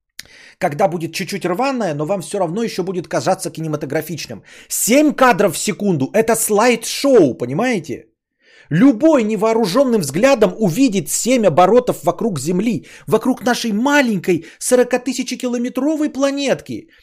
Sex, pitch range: male, 175-255 Hz